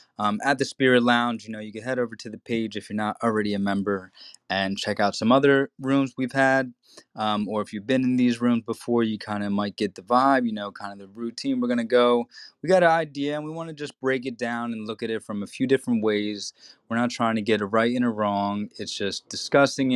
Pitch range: 105-130 Hz